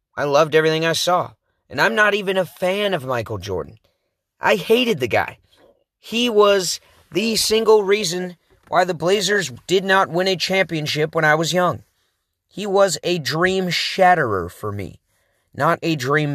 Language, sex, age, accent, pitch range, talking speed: English, male, 30-49, American, 105-170 Hz, 165 wpm